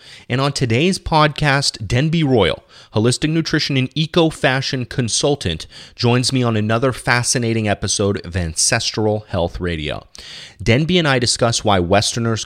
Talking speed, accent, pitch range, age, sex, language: 130 wpm, American, 95-125 Hz, 30-49, male, English